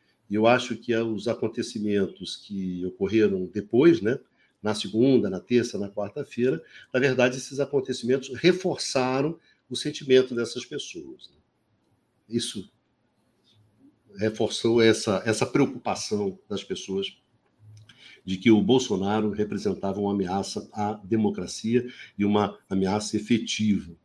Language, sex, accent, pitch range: Portuguese, male, Brazilian, 100-125 Hz